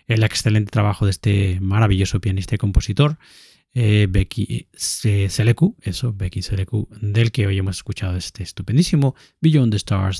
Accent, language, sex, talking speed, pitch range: Spanish, Spanish, male, 130 wpm, 105-120 Hz